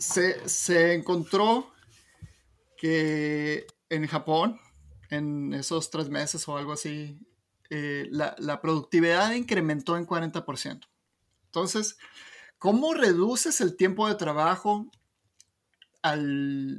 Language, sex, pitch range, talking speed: Spanish, male, 150-185 Hz, 95 wpm